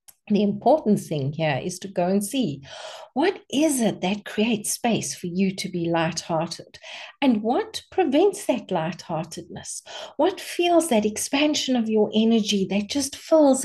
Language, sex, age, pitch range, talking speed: English, female, 50-69, 190-255 Hz, 155 wpm